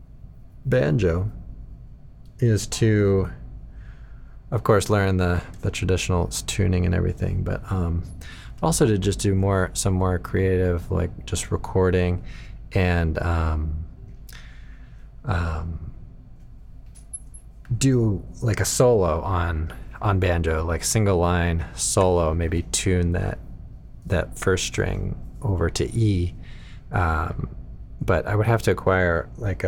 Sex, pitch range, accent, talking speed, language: male, 90-110 Hz, American, 115 wpm, English